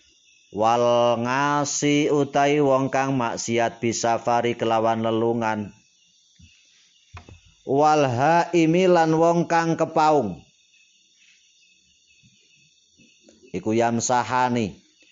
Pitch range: 115-130 Hz